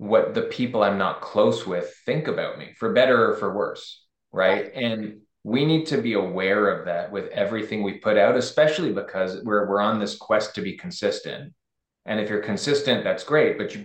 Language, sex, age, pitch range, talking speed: English, male, 20-39, 95-115 Hz, 205 wpm